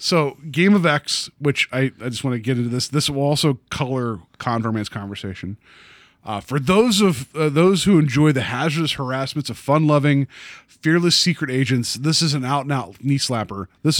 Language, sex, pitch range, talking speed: English, male, 120-155 Hz, 175 wpm